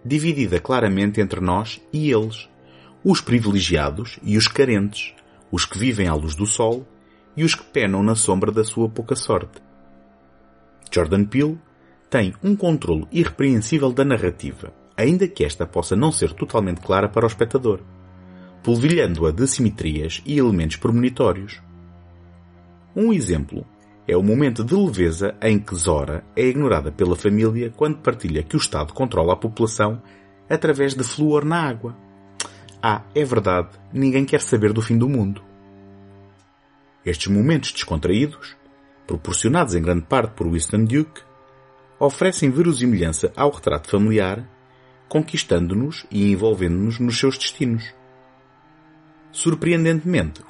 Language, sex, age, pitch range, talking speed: Portuguese, male, 30-49, 90-135 Hz, 135 wpm